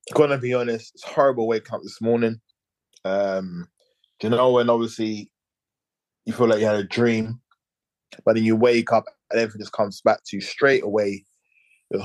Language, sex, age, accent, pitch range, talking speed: English, male, 20-39, British, 110-145 Hz, 185 wpm